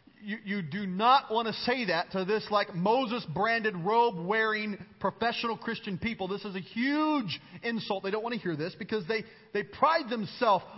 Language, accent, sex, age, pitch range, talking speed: English, American, male, 40-59, 165-235 Hz, 180 wpm